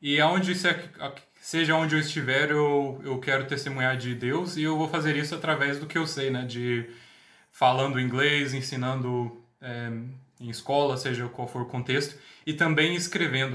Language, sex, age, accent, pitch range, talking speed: Portuguese, male, 20-39, Brazilian, 130-165 Hz, 165 wpm